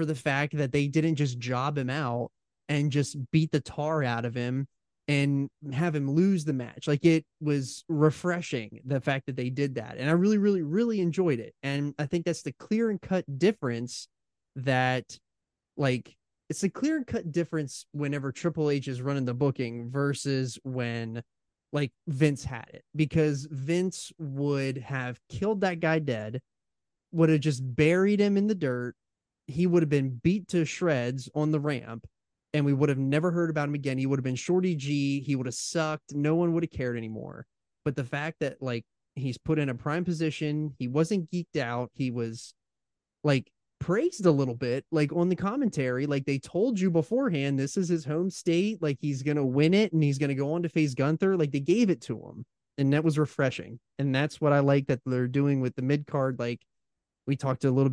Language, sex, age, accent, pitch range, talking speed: English, male, 20-39, American, 130-160 Hz, 205 wpm